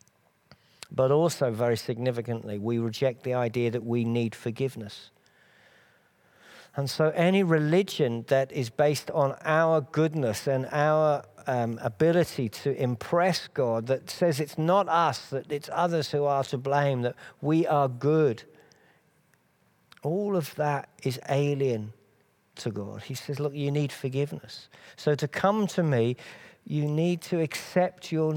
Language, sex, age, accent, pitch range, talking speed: English, male, 50-69, British, 115-150 Hz, 145 wpm